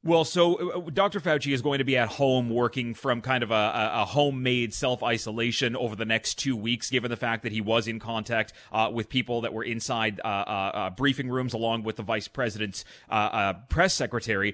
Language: English